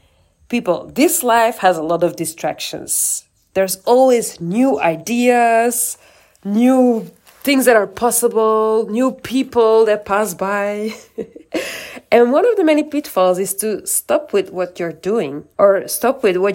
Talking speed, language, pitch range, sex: 140 wpm, English, 180-235 Hz, female